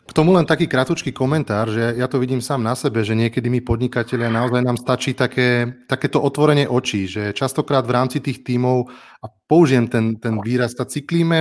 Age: 30-49